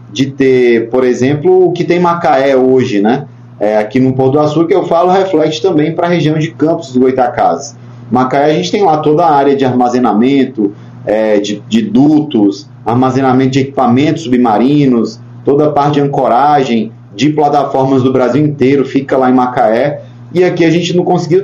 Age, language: 30-49, Portuguese